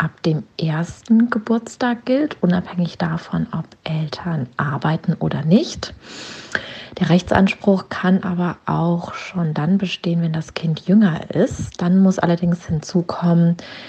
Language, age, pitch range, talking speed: German, 30-49, 165-200 Hz, 125 wpm